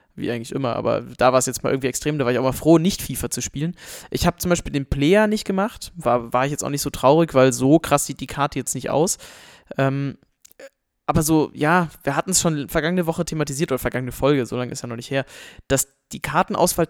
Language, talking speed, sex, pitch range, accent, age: German, 250 wpm, male, 135-165 Hz, German, 20-39